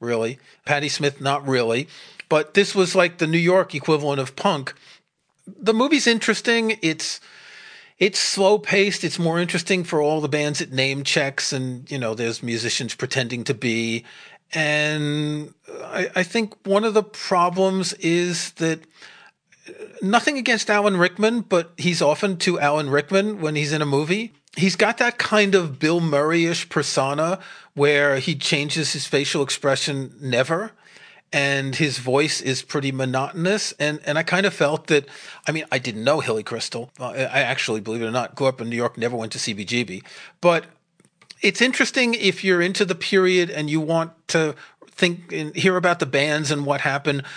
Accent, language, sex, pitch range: American, English, male, 140-185 Hz